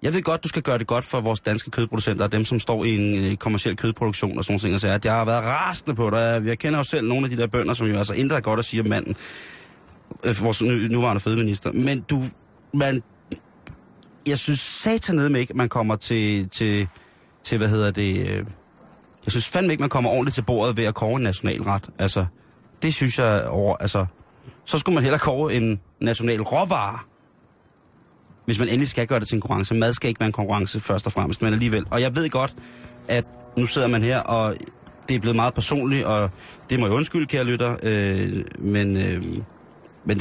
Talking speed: 215 wpm